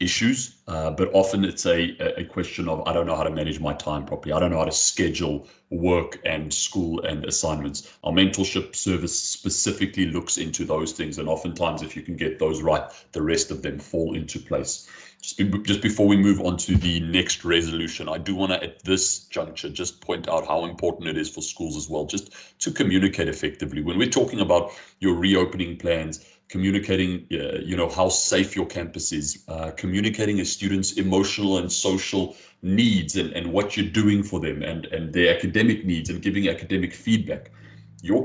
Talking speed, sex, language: 200 wpm, male, English